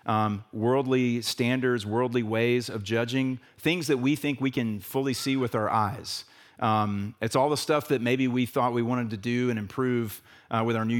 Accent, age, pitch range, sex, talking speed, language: American, 40-59, 115-160 Hz, male, 200 wpm, English